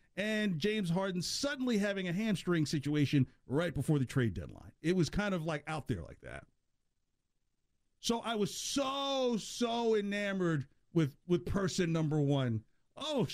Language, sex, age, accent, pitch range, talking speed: English, male, 50-69, American, 125-205 Hz, 155 wpm